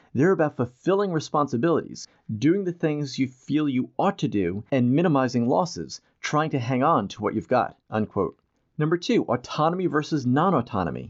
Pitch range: 115-155 Hz